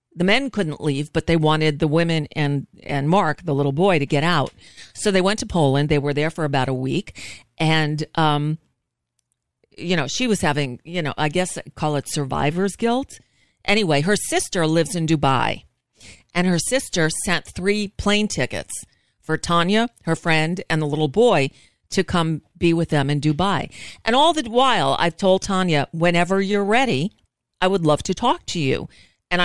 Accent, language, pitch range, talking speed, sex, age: American, English, 150-200 Hz, 185 wpm, female, 50-69